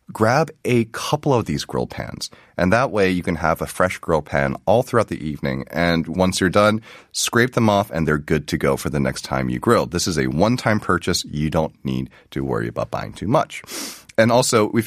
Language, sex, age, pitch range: Korean, male, 30-49, 75-110 Hz